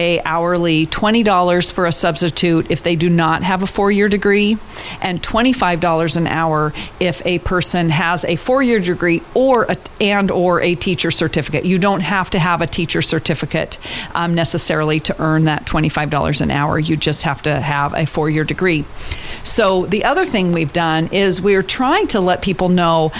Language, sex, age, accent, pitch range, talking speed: English, female, 40-59, American, 165-200 Hz, 185 wpm